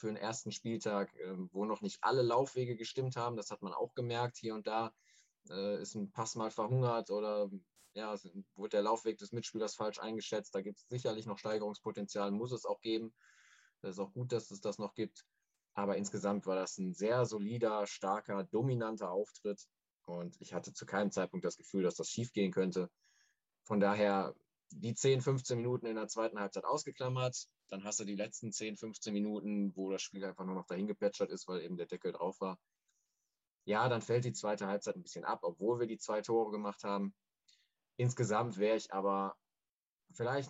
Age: 20-39